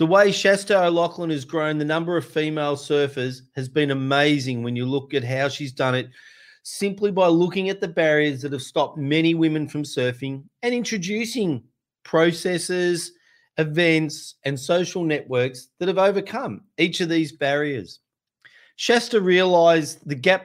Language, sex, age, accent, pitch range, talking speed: English, male, 40-59, Australian, 145-185 Hz, 155 wpm